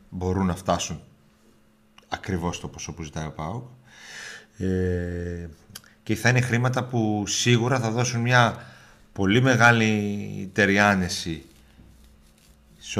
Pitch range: 90-125 Hz